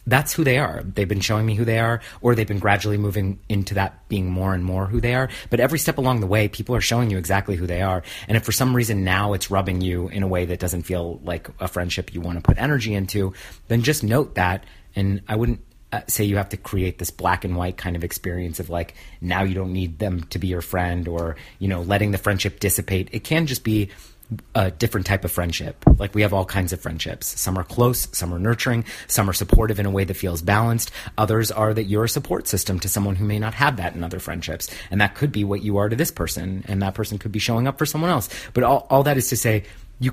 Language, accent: English, American